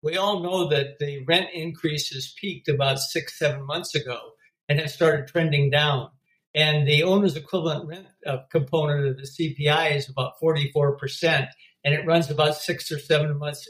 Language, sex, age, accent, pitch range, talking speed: English, male, 60-79, American, 135-155 Hz, 165 wpm